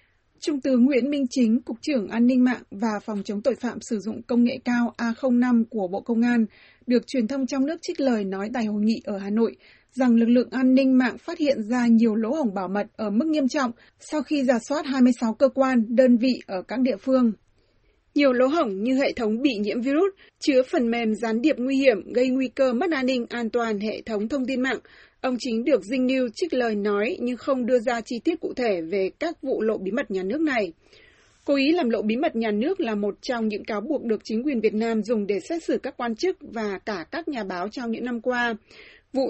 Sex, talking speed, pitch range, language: female, 245 wpm, 220-270 Hz, Vietnamese